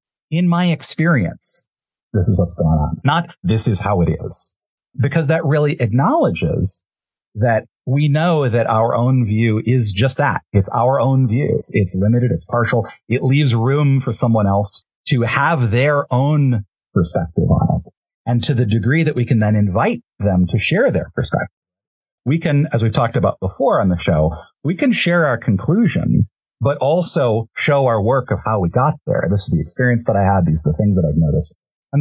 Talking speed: 195 wpm